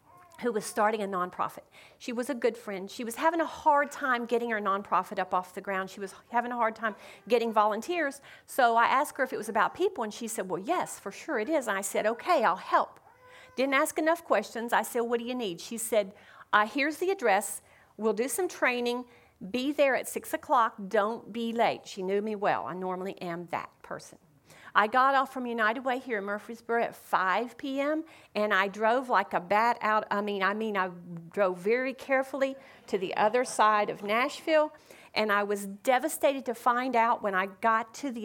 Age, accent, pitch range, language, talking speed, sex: 40-59, American, 200-265 Hz, English, 210 wpm, female